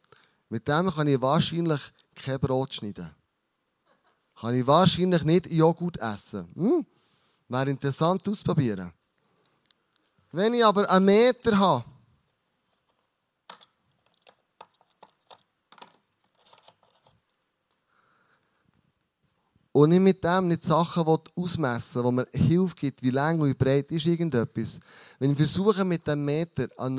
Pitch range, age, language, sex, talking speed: 130-180 Hz, 30-49, German, male, 110 wpm